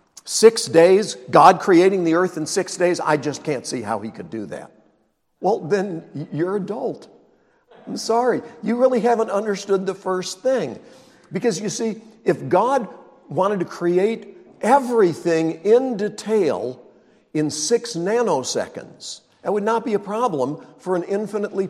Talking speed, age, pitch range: 150 wpm, 60-79, 150-205 Hz